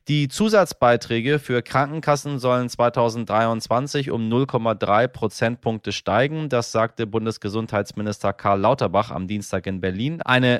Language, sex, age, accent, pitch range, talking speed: German, male, 30-49, German, 110-140 Hz, 115 wpm